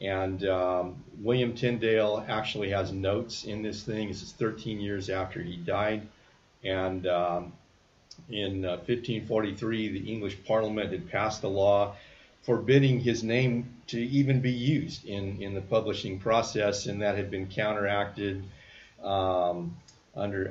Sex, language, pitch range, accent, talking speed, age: male, English, 100-120 Hz, American, 140 wpm, 50-69